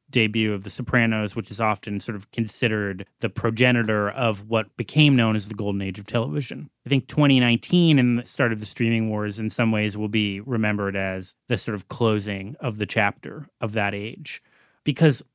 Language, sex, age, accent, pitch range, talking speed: English, male, 30-49, American, 110-130 Hz, 195 wpm